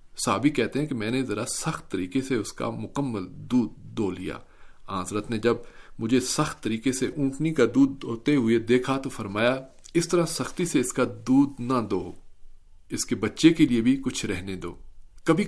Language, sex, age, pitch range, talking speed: Urdu, male, 40-59, 105-140 Hz, 195 wpm